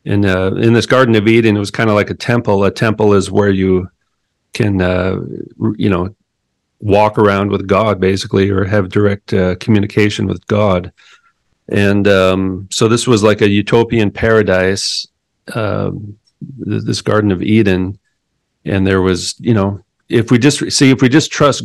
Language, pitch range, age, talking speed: English, 95-115 Hz, 40-59, 170 wpm